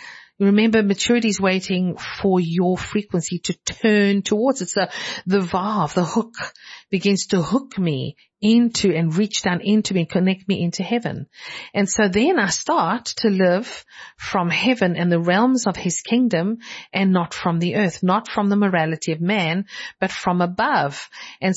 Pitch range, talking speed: 180-215 Hz, 170 wpm